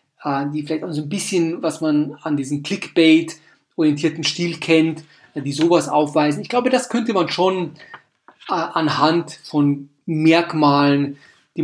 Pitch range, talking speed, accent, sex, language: 150-185 Hz, 135 wpm, German, male, German